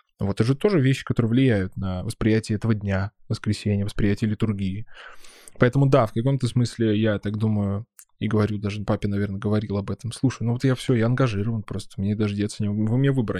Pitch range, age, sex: 105-120 Hz, 20-39, male